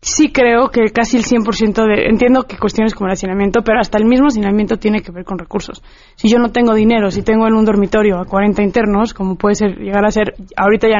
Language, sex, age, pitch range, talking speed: Spanish, female, 20-39, 205-240 Hz, 240 wpm